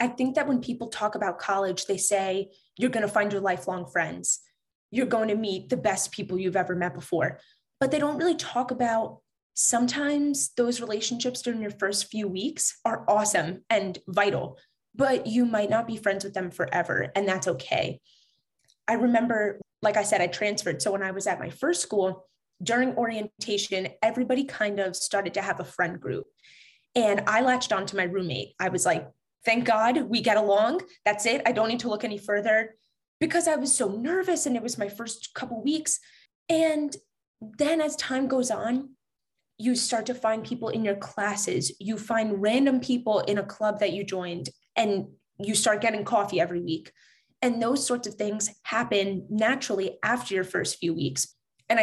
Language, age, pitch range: English, 20-39, 195-245 Hz